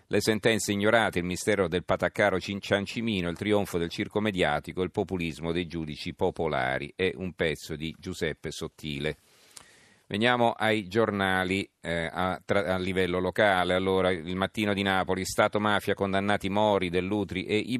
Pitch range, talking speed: 85-105 Hz, 140 wpm